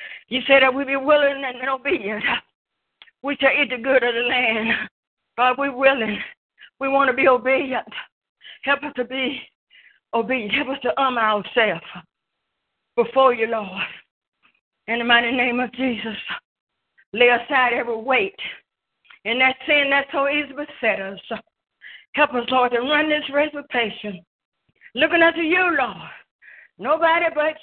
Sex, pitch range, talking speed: female, 235-295 Hz, 150 wpm